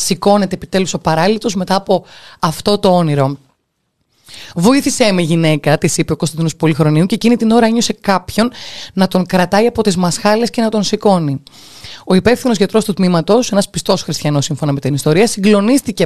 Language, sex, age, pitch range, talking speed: Greek, female, 20-39, 160-205 Hz, 170 wpm